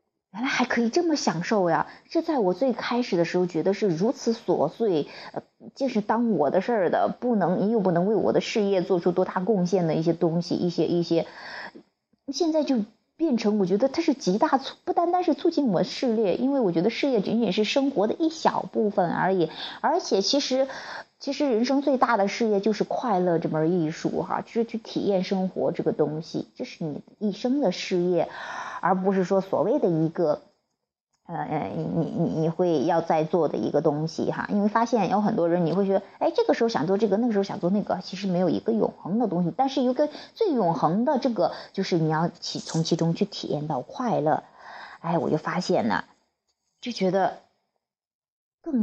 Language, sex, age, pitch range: Chinese, female, 30-49, 180-250 Hz